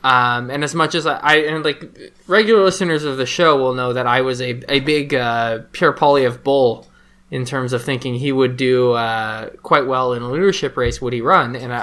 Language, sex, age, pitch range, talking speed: English, male, 20-39, 125-165 Hz, 230 wpm